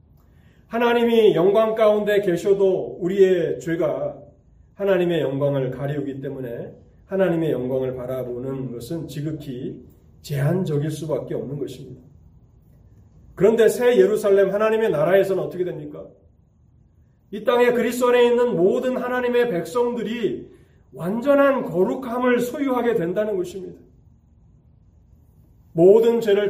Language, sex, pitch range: Korean, male, 130-210 Hz